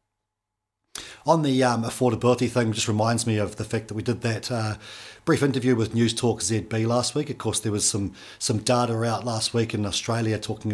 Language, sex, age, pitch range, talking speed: English, male, 40-59, 110-125 Hz, 205 wpm